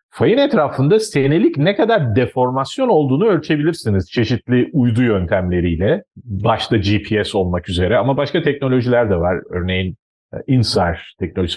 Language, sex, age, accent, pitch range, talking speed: Turkish, male, 40-59, native, 105-160 Hz, 120 wpm